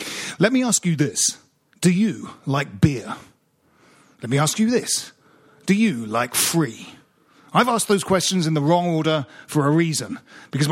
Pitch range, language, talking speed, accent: 145-195 Hz, English, 170 wpm, British